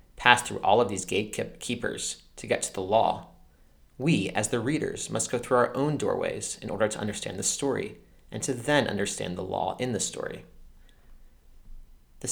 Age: 30-49